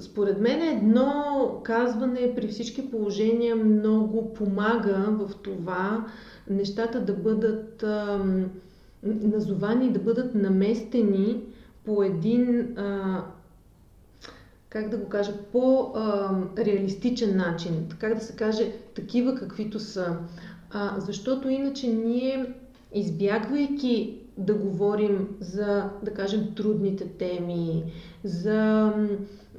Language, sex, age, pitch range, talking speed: Bulgarian, female, 30-49, 195-230 Hz, 95 wpm